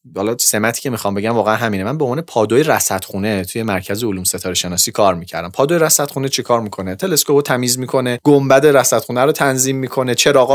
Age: 30-49